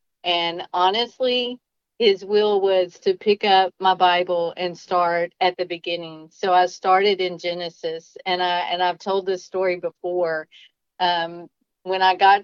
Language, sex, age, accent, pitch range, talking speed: English, female, 40-59, American, 175-195 Hz, 155 wpm